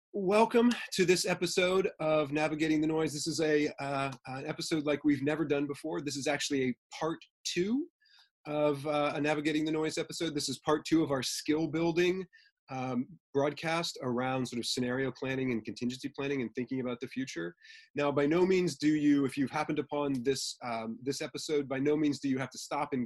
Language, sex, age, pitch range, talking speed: English, male, 30-49, 125-155 Hz, 200 wpm